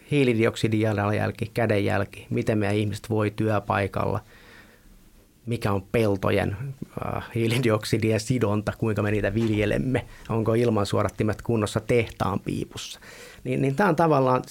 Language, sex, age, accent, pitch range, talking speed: Finnish, male, 30-49, native, 105-130 Hz, 110 wpm